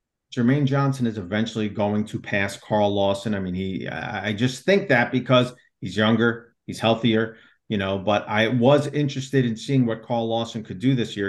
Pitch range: 105-130 Hz